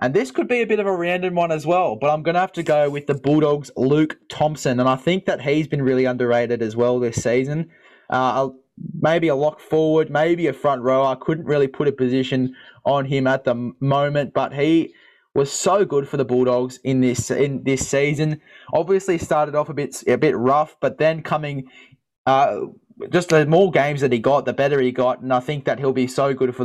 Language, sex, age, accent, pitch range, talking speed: English, male, 20-39, Australian, 130-160 Hz, 225 wpm